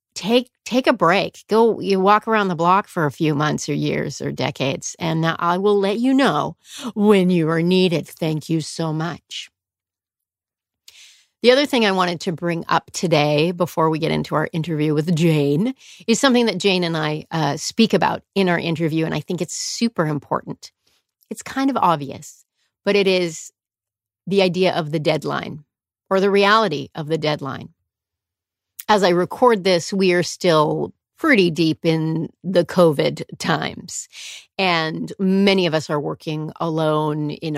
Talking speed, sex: 170 wpm, female